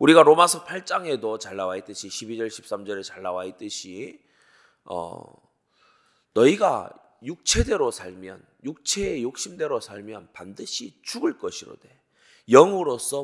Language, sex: Korean, male